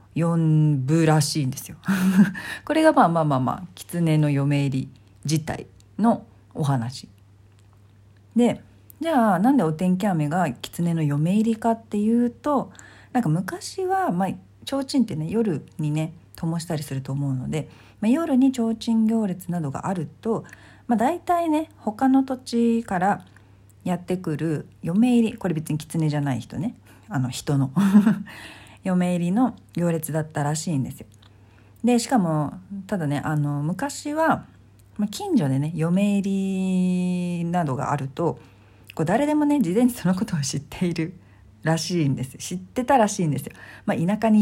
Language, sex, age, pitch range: Japanese, female, 40-59, 145-215 Hz